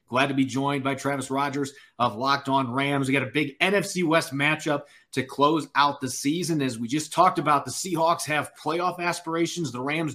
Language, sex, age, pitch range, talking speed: English, male, 30-49, 130-170 Hz, 205 wpm